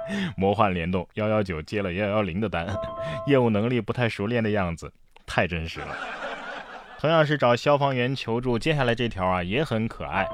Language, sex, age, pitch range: Chinese, male, 20-39, 95-130 Hz